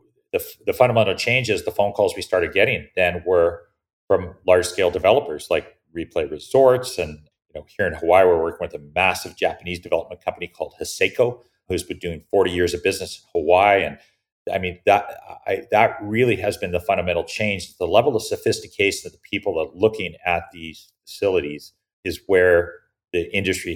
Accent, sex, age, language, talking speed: American, male, 40-59, English, 180 wpm